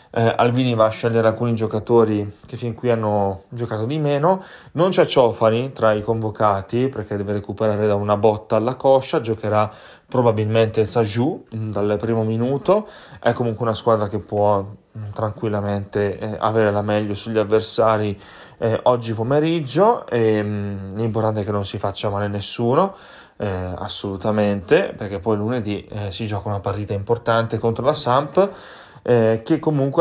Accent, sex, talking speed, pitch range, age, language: native, male, 145 wpm, 100-115 Hz, 20-39, Italian